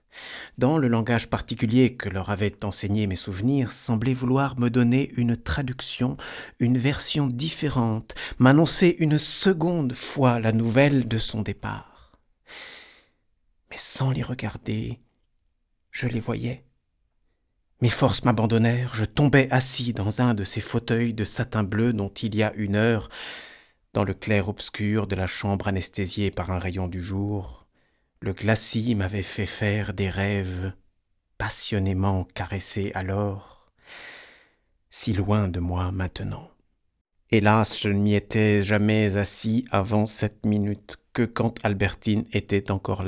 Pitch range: 100-130 Hz